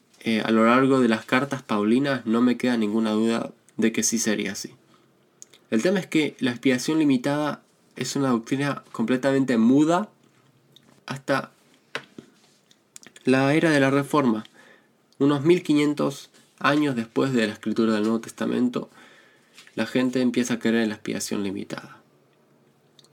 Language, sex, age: Spanish, male, 20-39